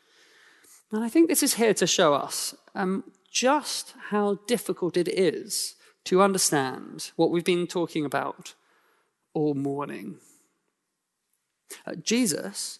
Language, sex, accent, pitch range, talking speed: English, male, British, 155-220 Hz, 120 wpm